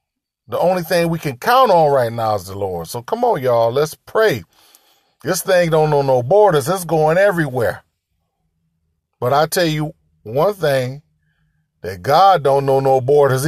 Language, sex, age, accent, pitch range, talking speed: English, male, 40-59, American, 135-190 Hz, 175 wpm